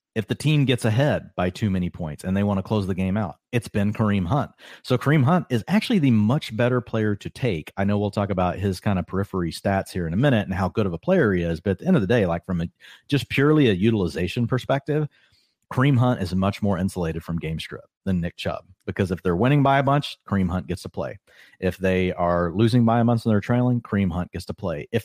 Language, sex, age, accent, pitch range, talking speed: English, male, 40-59, American, 90-120 Hz, 260 wpm